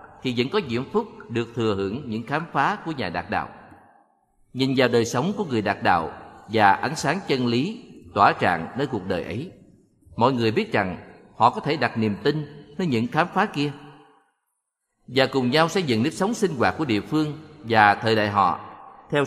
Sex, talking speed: male, 205 wpm